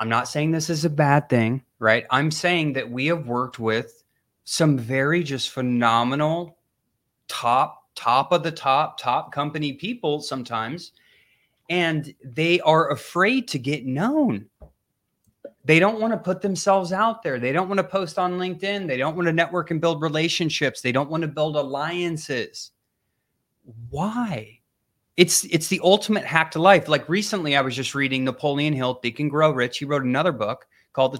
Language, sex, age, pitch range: English, male, 30-49, 130-175 Hz